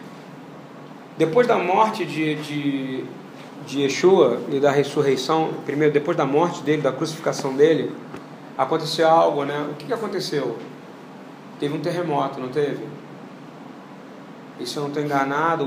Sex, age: male, 40-59